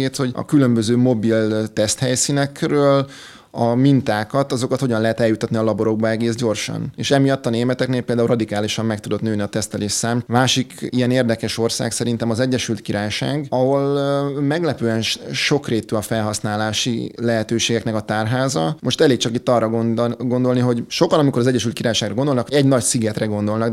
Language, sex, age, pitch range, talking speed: English, male, 20-39, 110-130 Hz, 150 wpm